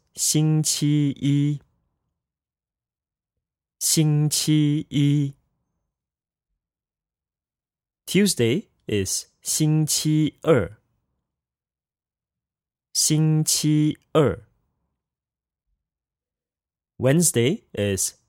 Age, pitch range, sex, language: 20-39, 105-155 Hz, male, English